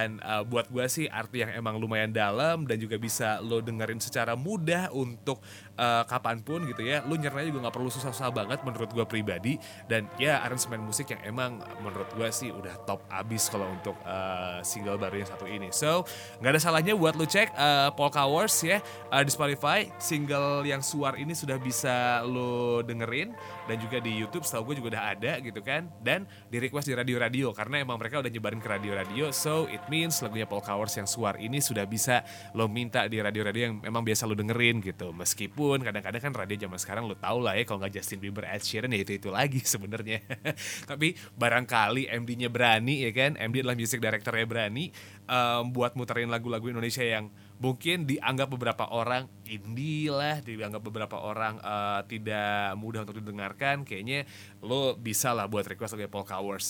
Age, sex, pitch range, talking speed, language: 20-39, male, 110-140 Hz, 185 wpm, Indonesian